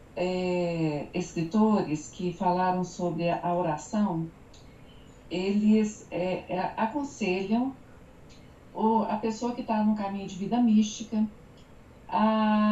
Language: Portuguese